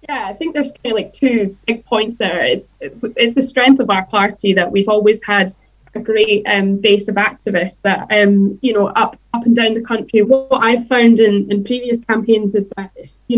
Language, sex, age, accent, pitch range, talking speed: English, female, 10-29, British, 200-235 Hz, 215 wpm